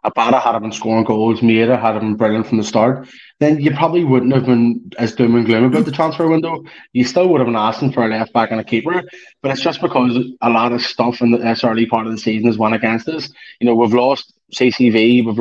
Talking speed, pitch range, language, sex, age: 250 wpm, 115-135 Hz, English, male, 20-39